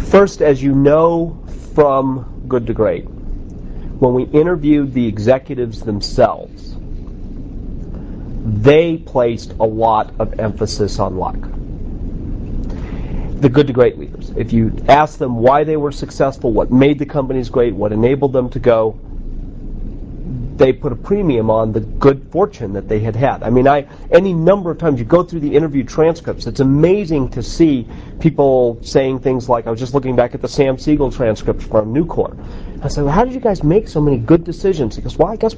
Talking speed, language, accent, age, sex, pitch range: 180 wpm, English, American, 40-59, male, 110-145 Hz